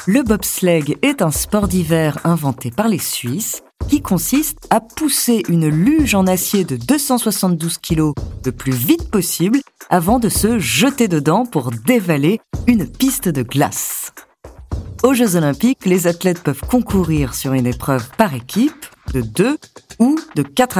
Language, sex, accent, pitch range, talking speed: French, female, French, 140-215 Hz, 155 wpm